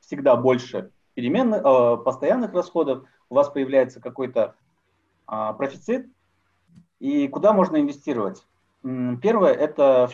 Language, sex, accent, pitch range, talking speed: Russian, male, native, 115-150 Hz, 95 wpm